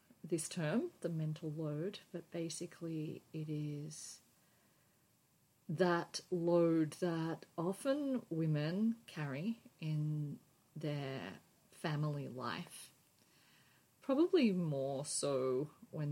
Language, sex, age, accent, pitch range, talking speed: English, female, 40-59, Australian, 145-175 Hz, 85 wpm